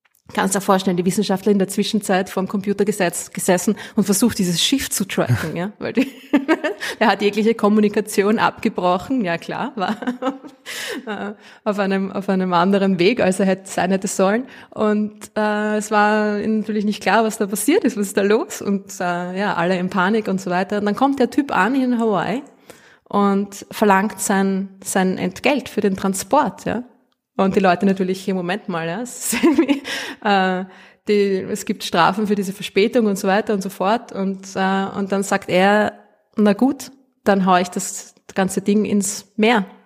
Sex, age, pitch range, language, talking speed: female, 20-39, 190-225 Hz, German, 185 wpm